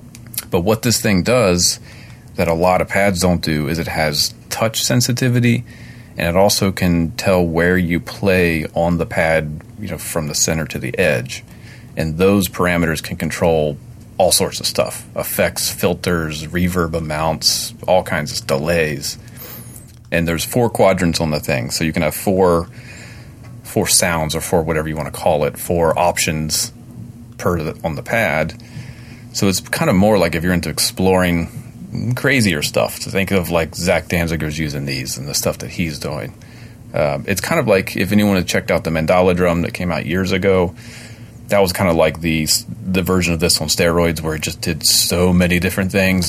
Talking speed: 190 wpm